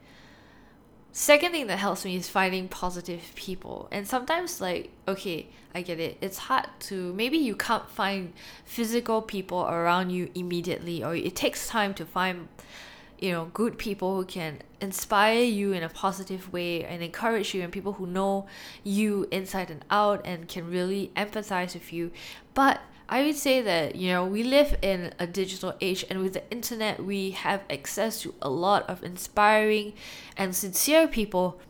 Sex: female